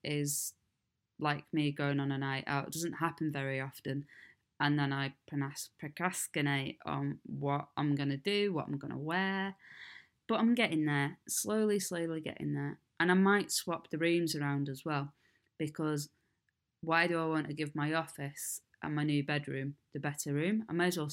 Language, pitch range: English, 140-160 Hz